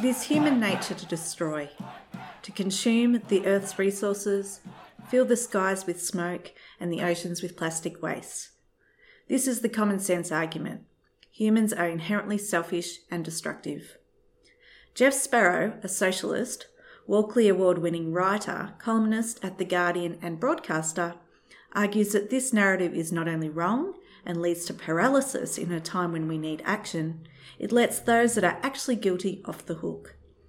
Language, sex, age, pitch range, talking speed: English, female, 30-49, 170-230 Hz, 150 wpm